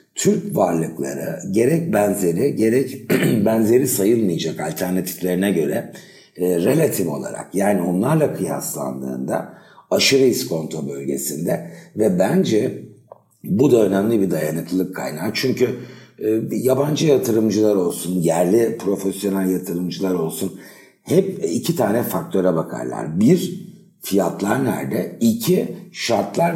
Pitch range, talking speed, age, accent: 85-125 Hz, 100 wpm, 60-79, native